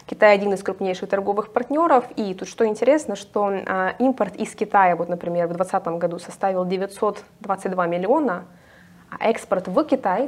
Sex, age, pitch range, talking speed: female, 20-39, 180-230 Hz, 160 wpm